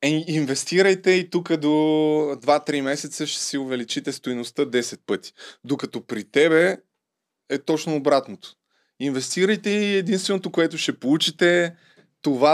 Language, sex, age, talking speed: Bulgarian, male, 20-39, 120 wpm